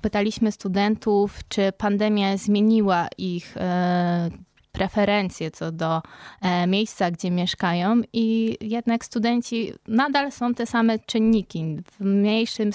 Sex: female